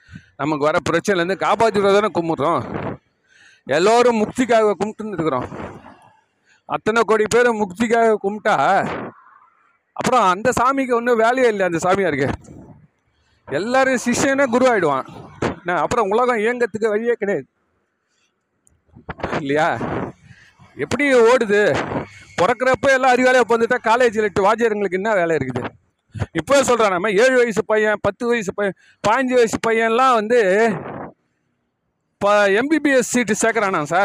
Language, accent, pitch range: Tamil, native, 195-245 Hz